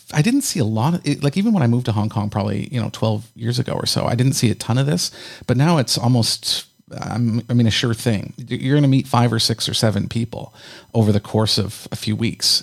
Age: 40-59